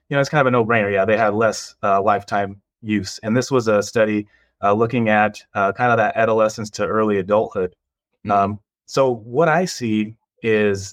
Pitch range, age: 100-115 Hz, 30-49